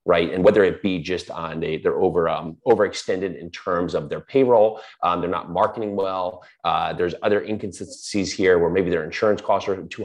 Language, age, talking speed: English, 30-49, 195 wpm